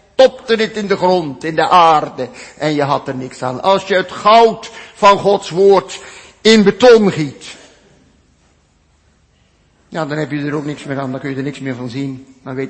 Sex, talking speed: male, 205 wpm